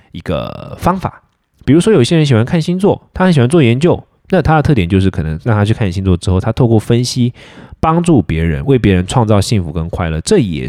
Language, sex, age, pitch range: Chinese, male, 20-39, 90-120 Hz